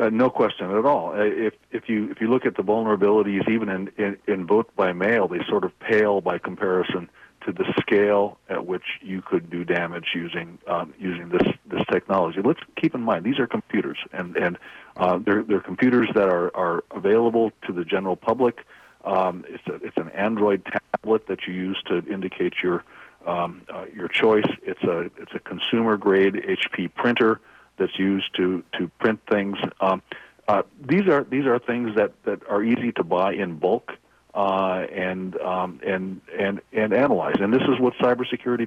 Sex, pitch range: male, 95-110 Hz